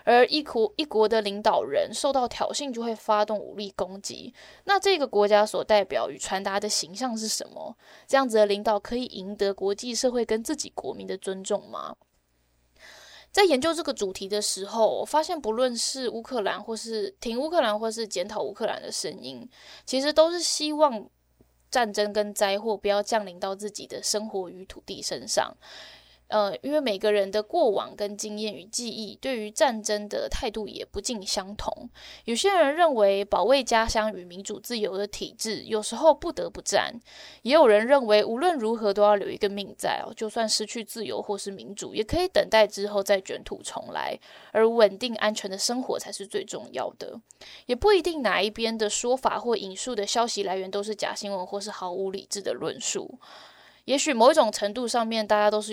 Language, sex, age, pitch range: Chinese, female, 10-29, 205-250 Hz